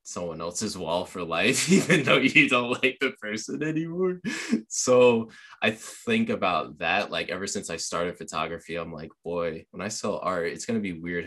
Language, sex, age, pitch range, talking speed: English, male, 20-39, 85-110 Hz, 190 wpm